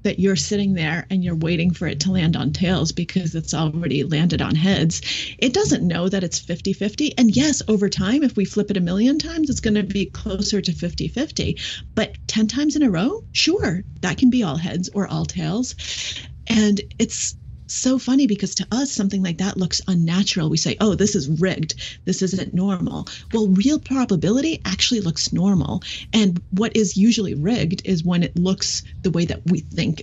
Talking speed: 200 wpm